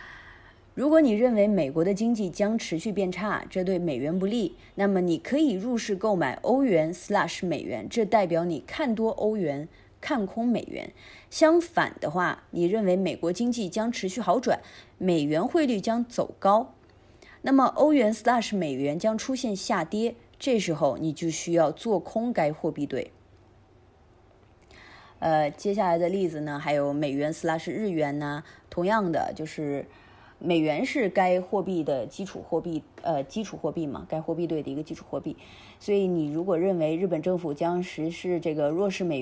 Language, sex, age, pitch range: Chinese, female, 20-39, 155-215 Hz